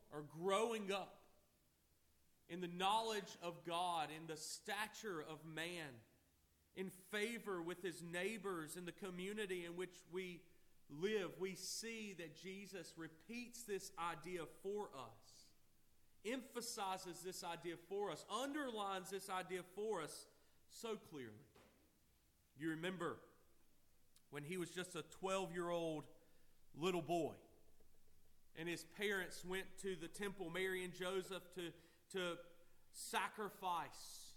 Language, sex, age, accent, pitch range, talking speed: English, male, 40-59, American, 160-195 Hz, 120 wpm